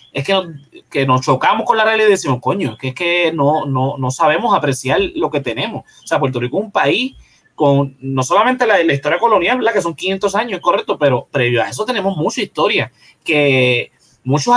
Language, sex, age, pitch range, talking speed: Spanish, male, 20-39, 135-195 Hz, 215 wpm